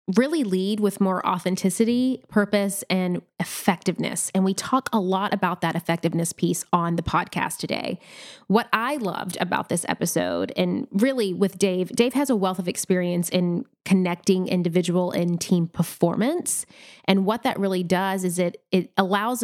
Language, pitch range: English, 180-215 Hz